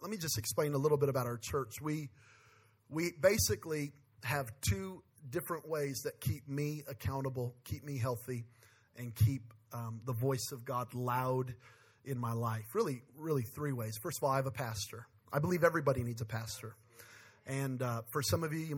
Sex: male